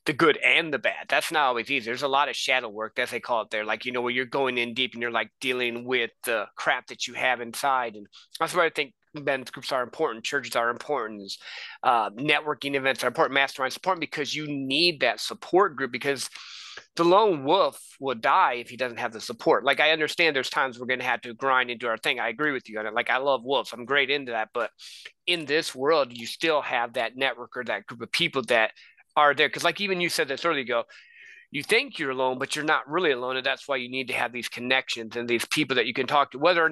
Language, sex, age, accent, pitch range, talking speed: English, male, 30-49, American, 125-160 Hz, 260 wpm